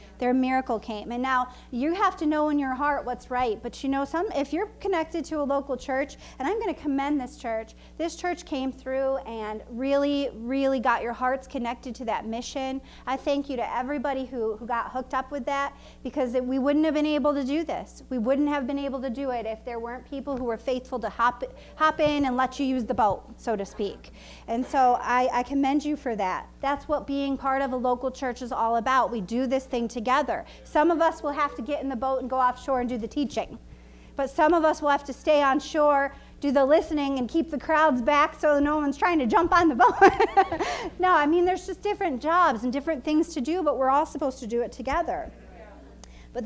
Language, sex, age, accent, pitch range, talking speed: English, female, 30-49, American, 250-300 Hz, 235 wpm